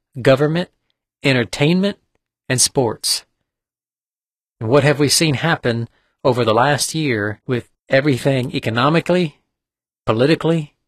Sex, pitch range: male, 115-140 Hz